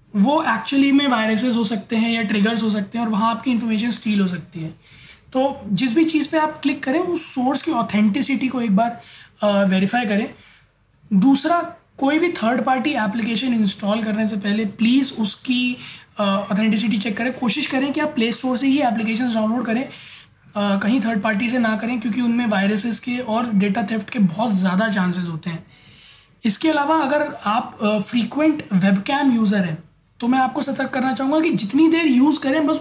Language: Hindi